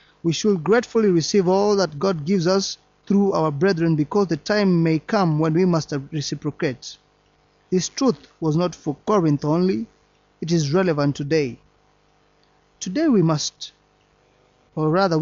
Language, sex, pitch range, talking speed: English, male, 150-190 Hz, 145 wpm